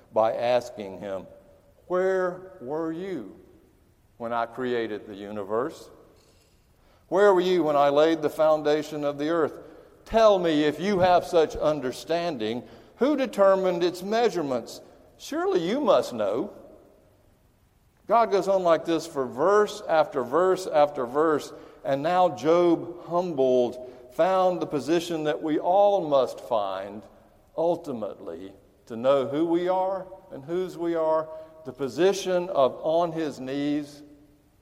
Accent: American